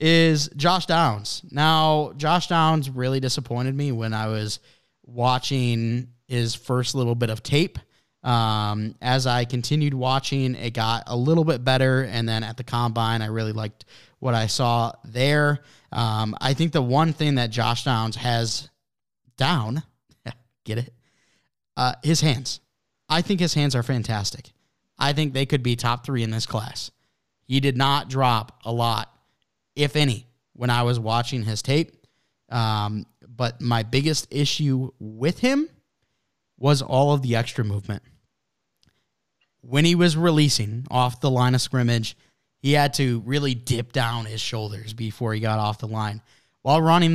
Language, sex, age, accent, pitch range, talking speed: English, male, 20-39, American, 115-145 Hz, 160 wpm